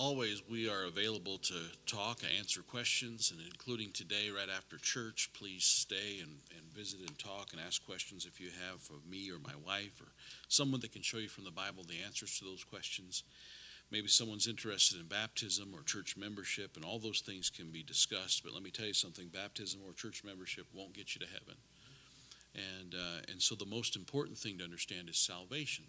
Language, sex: English, male